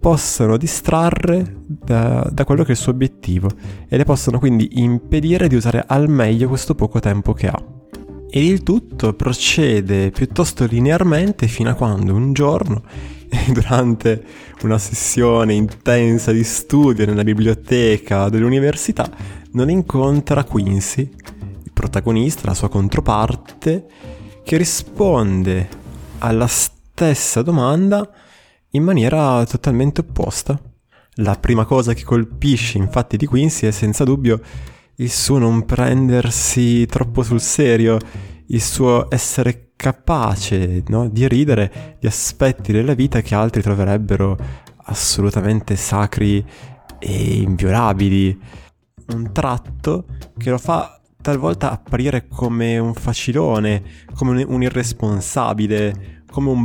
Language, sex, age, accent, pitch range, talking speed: Italian, male, 20-39, native, 105-130 Hz, 120 wpm